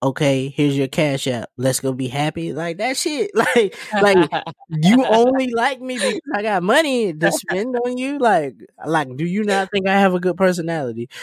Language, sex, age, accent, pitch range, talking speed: English, male, 20-39, American, 160-195 Hz, 200 wpm